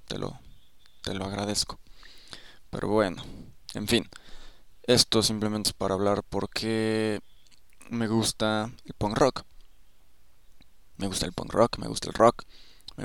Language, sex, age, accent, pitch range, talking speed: Spanish, male, 20-39, Mexican, 100-110 Hz, 140 wpm